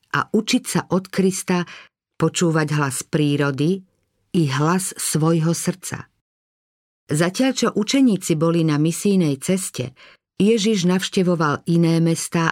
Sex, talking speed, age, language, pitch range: female, 110 wpm, 50-69, Slovak, 150-185 Hz